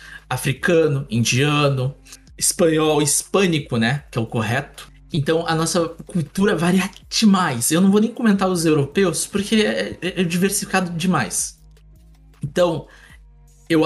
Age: 20-39